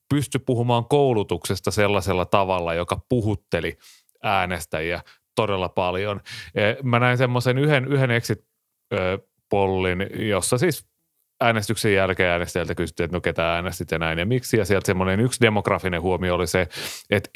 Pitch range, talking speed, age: 90-110 Hz, 135 wpm, 30-49